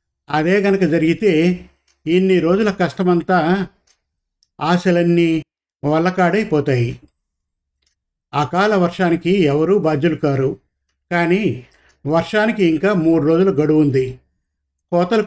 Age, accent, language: 50-69, native, Telugu